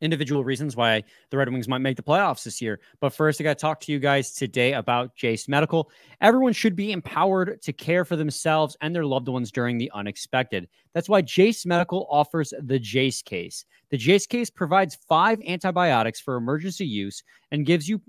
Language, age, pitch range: English, 30-49, 125-175 Hz